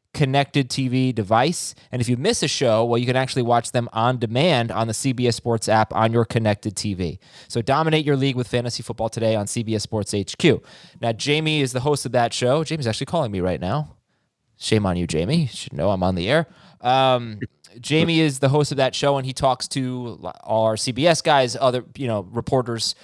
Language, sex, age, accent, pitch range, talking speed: English, male, 20-39, American, 110-140 Hz, 215 wpm